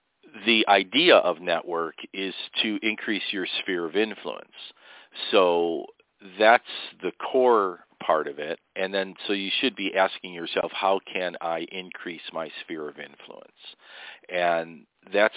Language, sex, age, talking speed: English, male, 50-69, 140 wpm